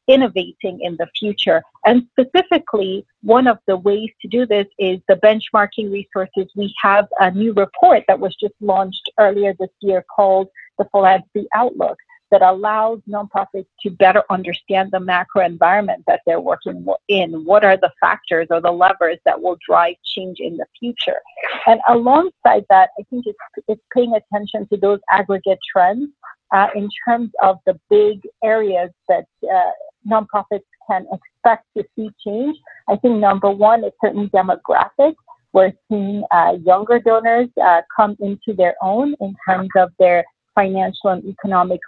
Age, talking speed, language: 50-69, 160 wpm, English